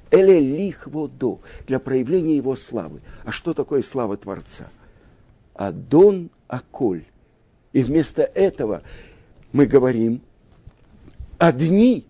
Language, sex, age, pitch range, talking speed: Russian, male, 60-79, 115-160 Hz, 95 wpm